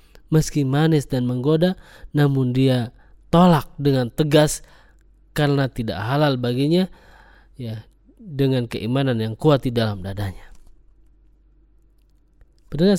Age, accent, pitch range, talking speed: 20-39, native, 125-180 Hz, 100 wpm